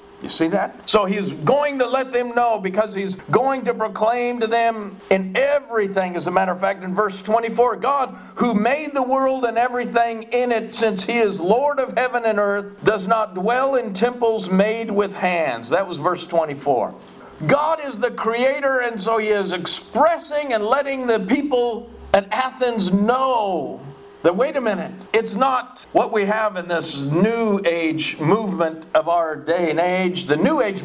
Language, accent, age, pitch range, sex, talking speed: English, American, 50-69, 185-245 Hz, male, 185 wpm